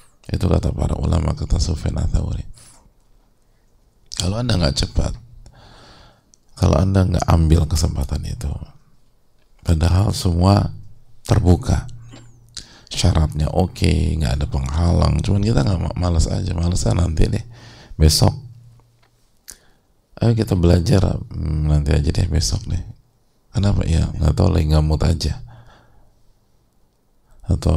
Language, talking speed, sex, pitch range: English, 110 wpm, male, 85-115 Hz